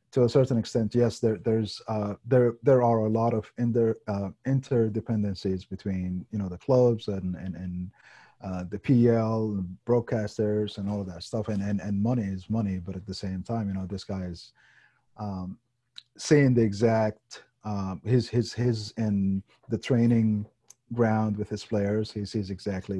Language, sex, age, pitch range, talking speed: English, male, 30-49, 95-115 Hz, 180 wpm